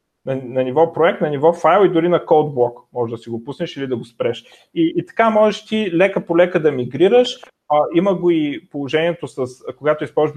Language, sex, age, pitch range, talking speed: Bulgarian, male, 30-49, 130-185 Hz, 225 wpm